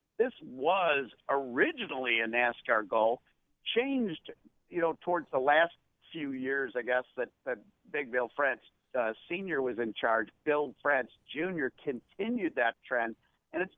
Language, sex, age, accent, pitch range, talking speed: English, male, 60-79, American, 125-175 Hz, 150 wpm